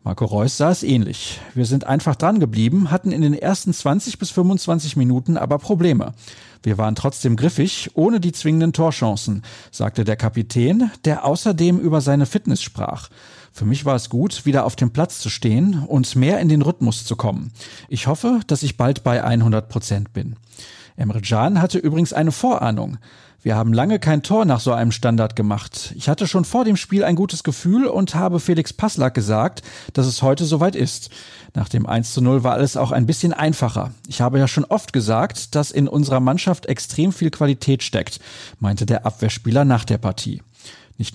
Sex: male